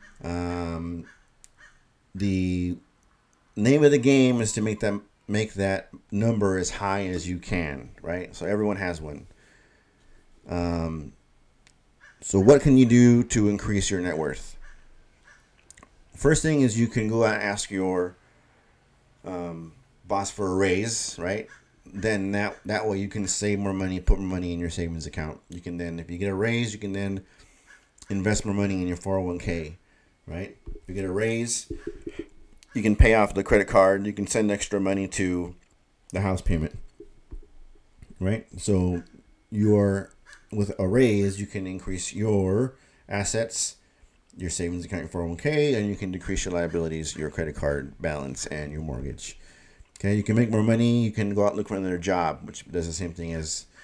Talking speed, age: 170 wpm, 30-49